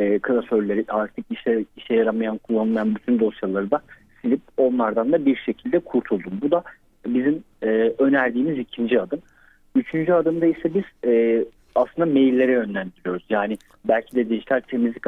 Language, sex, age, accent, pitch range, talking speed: Turkish, male, 40-59, native, 115-140 Hz, 140 wpm